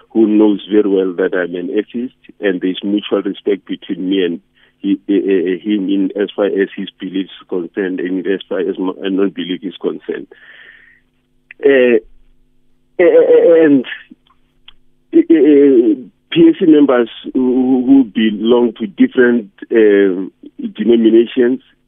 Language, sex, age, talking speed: English, male, 50-69, 130 wpm